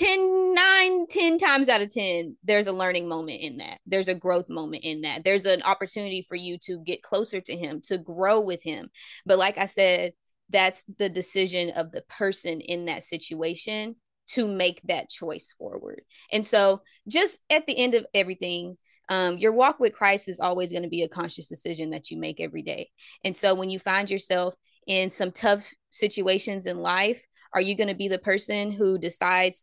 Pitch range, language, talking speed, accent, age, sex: 180-230 Hz, English, 195 wpm, American, 20-39, female